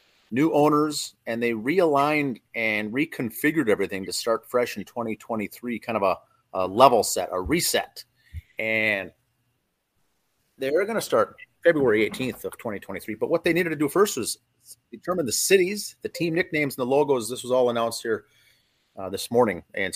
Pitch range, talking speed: 110-145 Hz, 170 wpm